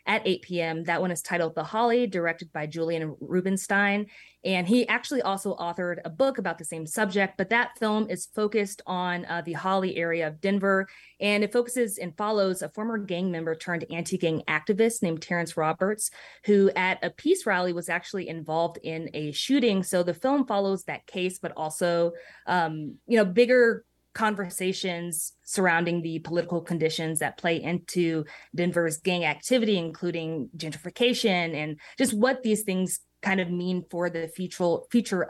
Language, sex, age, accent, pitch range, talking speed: English, female, 20-39, American, 165-205 Hz, 165 wpm